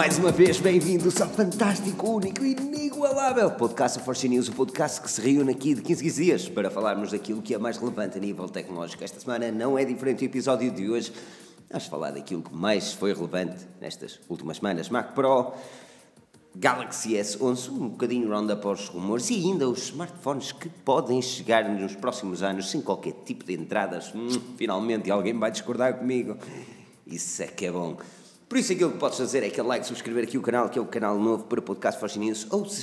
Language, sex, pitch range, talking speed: Portuguese, male, 95-130 Hz, 205 wpm